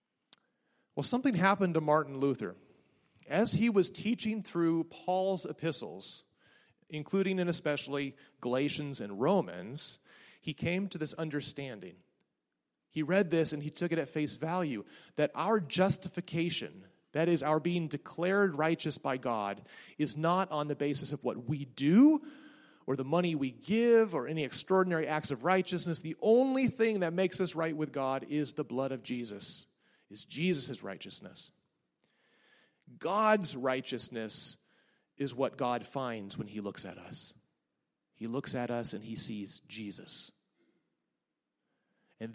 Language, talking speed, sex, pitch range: English, 145 wpm, male, 135-185 Hz